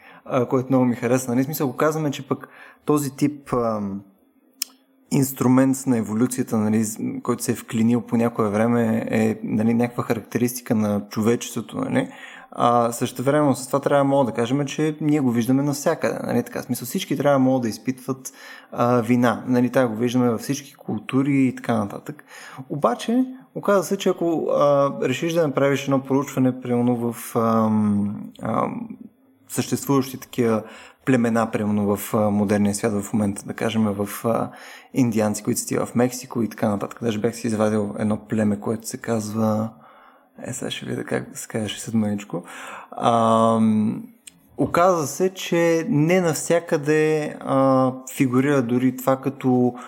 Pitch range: 115-140 Hz